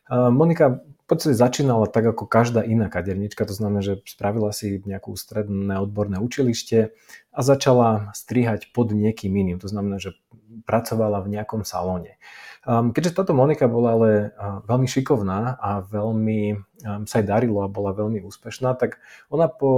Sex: male